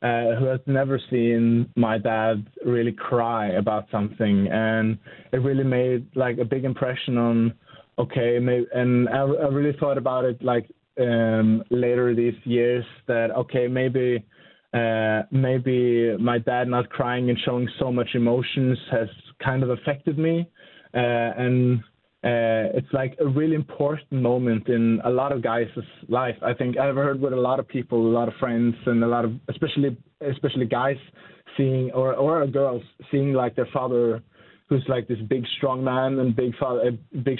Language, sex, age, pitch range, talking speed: Danish, male, 20-39, 115-130 Hz, 170 wpm